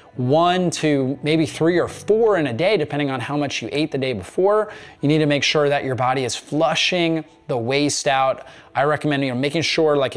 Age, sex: 20-39, male